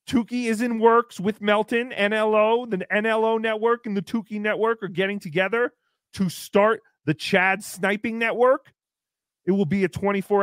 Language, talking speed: English, 160 wpm